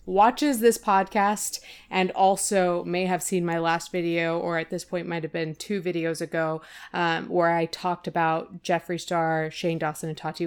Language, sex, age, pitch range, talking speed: English, female, 20-39, 170-210 Hz, 185 wpm